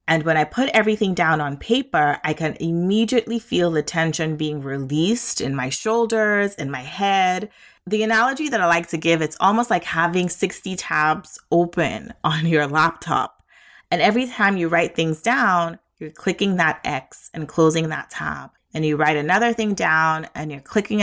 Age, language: 30-49, English